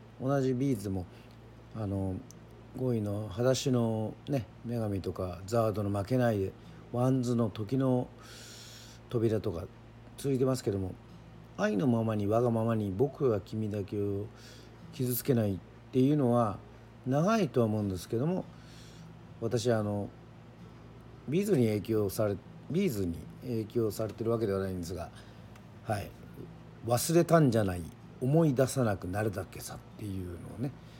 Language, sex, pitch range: Japanese, male, 100-125 Hz